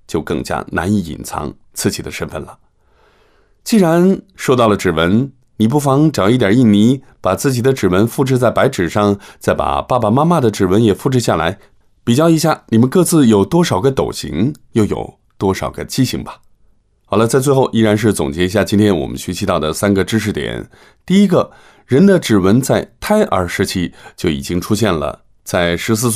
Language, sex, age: English, male, 20-39